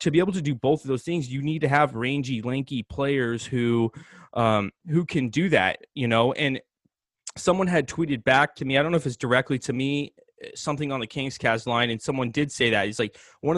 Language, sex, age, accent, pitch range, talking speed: English, male, 20-39, American, 120-150 Hz, 230 wpm